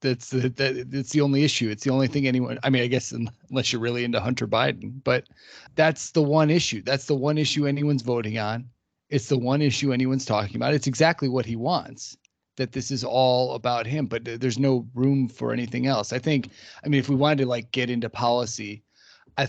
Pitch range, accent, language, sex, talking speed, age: 115-135 Hz, American, English, male, 215 wpm, 30-49